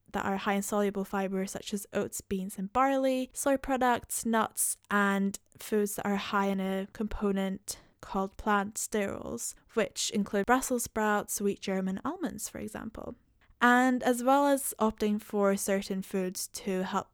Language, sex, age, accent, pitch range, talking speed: English, female, 10-29, British, 195-220 Hz, 160 wpm